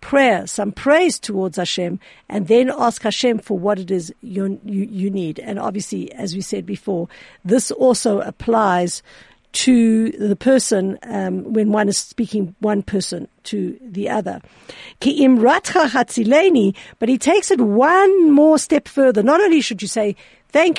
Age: 50-69